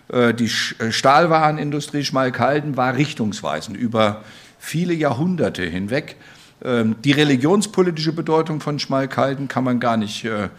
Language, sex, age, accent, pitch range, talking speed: German, male, 50-69, German, 120-160 Hz, 100 wpm